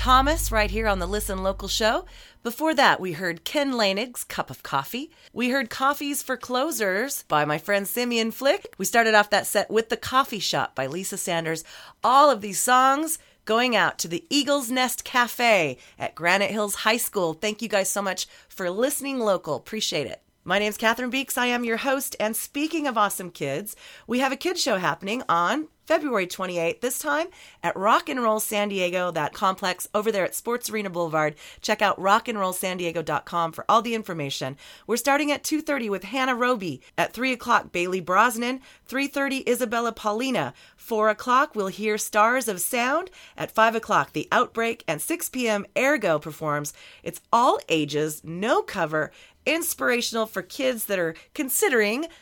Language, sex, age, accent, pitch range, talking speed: English, female, 30-49, American, 190-260 Hz, 175 wpm